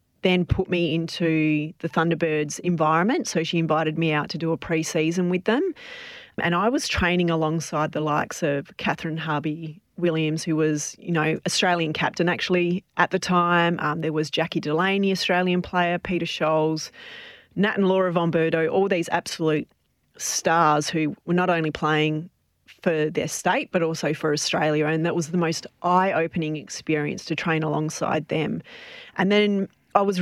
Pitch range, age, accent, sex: 160-185 Hz, 30-49, Australian, female